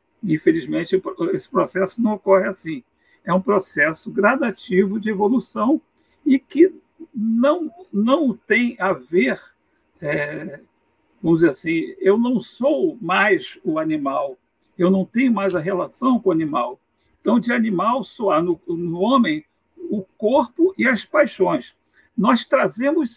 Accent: Brazilian